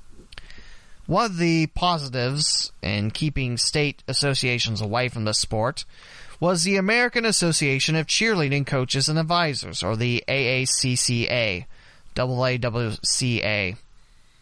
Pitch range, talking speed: 115-155 Hz, 105 wpm